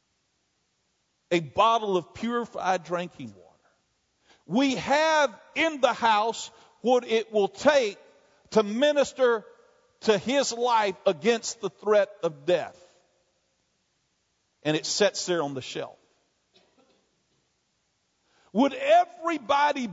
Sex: male